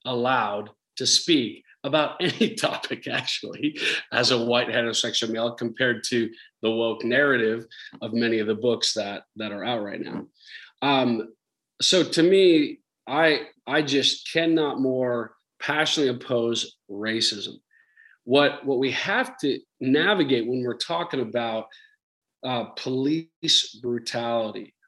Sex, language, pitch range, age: male, English, 115-150 Hz, 40-59